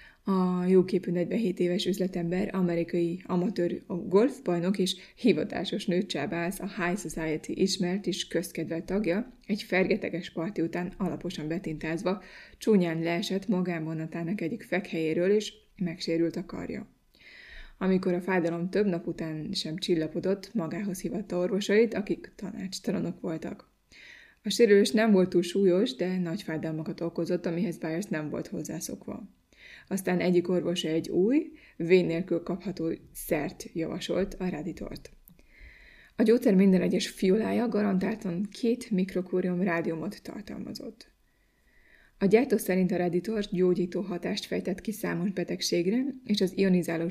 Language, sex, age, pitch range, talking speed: Hungarian, female, 20-39, 175-200 Hz, 125 wpm